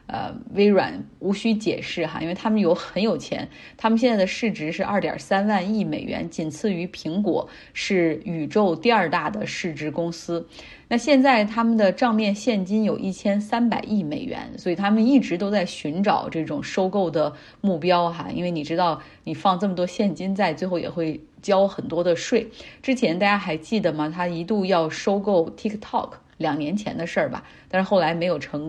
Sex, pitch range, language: female, 170-215 Hz, Chinese